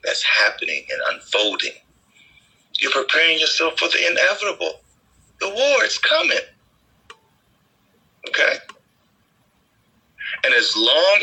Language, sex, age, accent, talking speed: English, male, 40-59, American, 95 wpm